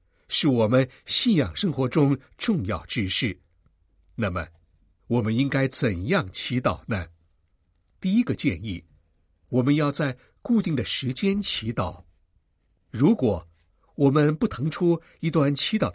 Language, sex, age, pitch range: Chinese, male, 60-79, 90-145 Hz